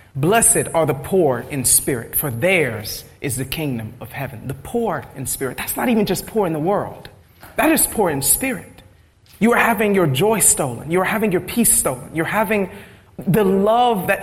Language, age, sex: English, 40-59, male